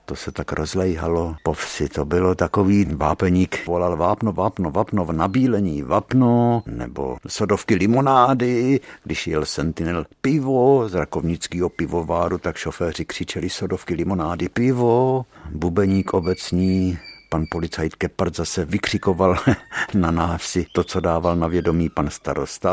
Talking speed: 130 wpm